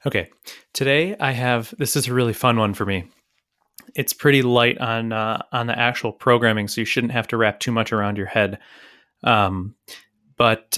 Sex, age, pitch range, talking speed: male, 20-39, 110-140 Hz, 190 wpm